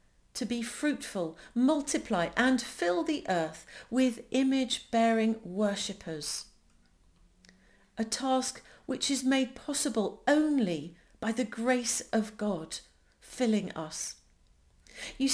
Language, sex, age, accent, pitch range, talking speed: English, female, 40-59, British, 200-265 Hz, 100 wpm